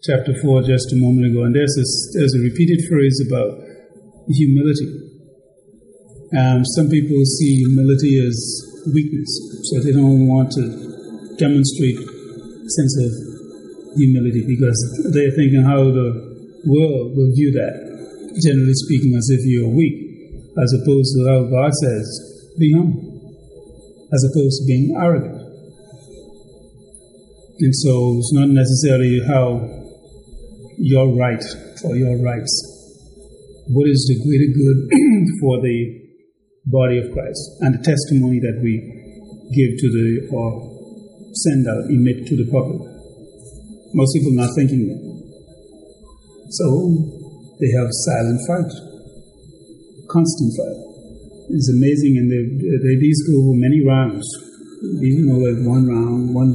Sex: male